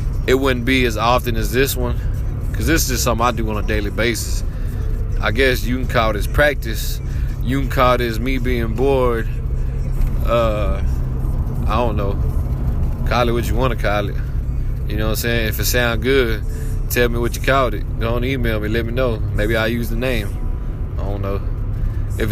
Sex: male